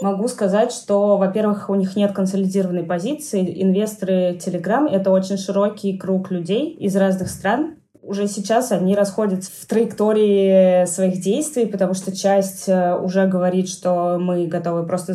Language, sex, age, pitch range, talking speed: Russian, female, 20-39, 180-205 Hz, 145 wpm